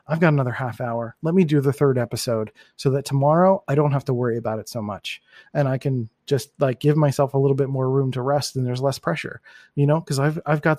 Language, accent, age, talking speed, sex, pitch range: English, American, 30-49, 260 wpm, male, 130-150 Hz